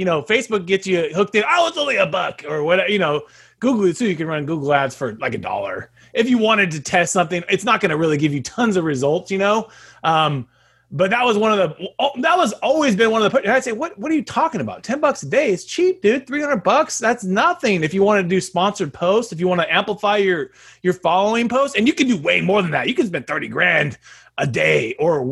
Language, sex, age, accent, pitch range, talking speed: English, male, 30-49, American, 160-225 Hz, 265 wpm